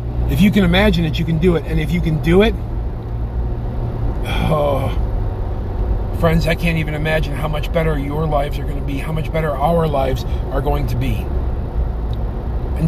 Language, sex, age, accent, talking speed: English, male, 40-59, American, 185 wpm